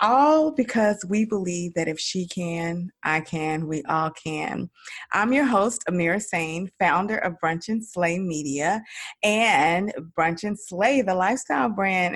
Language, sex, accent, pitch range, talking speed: English, female, American, 175-225 Hz, 155 wpm